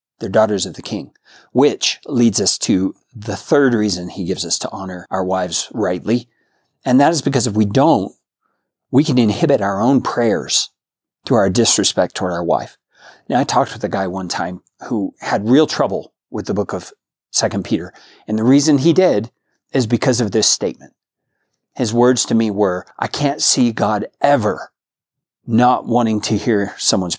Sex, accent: male, American